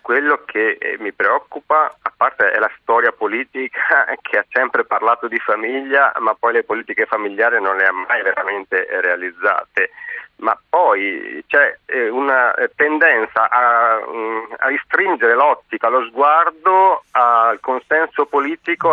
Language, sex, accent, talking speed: Italian, male, native, 130 wpm